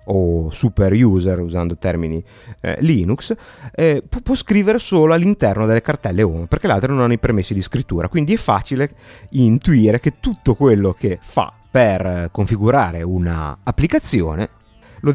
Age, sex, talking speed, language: 30-49, male, 145 wpm, Italian